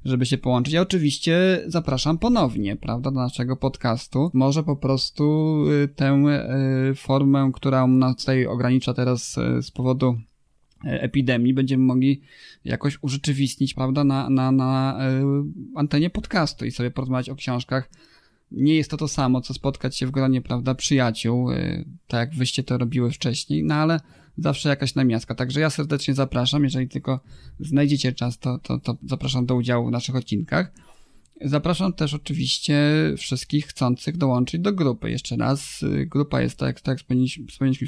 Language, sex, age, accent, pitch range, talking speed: Polish, male, 20-39, native, 125-145 Hz, 150 wpm